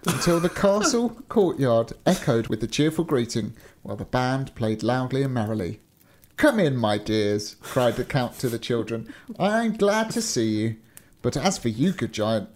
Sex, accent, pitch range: male, British, 110-180 Hz